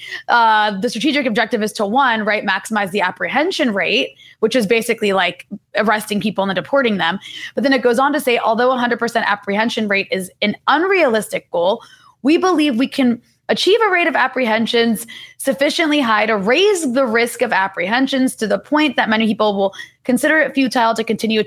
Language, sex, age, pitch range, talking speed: English, female, 20-39, 205-260 Hz, 185 wpm